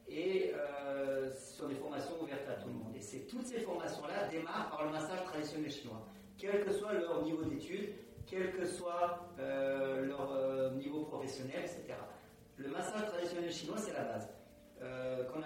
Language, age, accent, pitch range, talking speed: French, 40-59, French, 135-170 Hz, 180 wpm